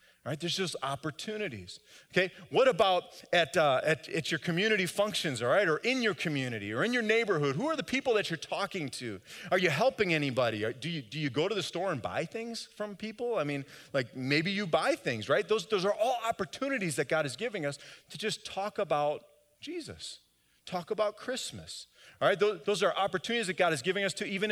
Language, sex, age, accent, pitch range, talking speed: English, male, 40-59, American, 150-200 Hz, 220 wpm